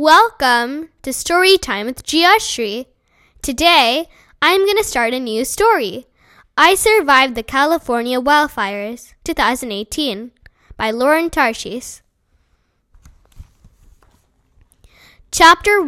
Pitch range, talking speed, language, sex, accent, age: 235-315 Hz, 85 wpm, English, female, American, 10-29